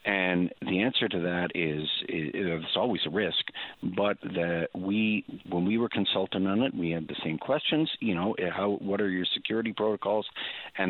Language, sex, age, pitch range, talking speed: English, male, 50-69, 80-100 Hz, 180 wpm